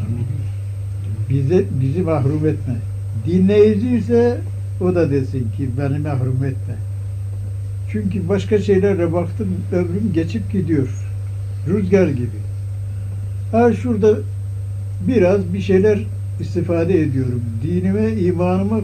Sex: male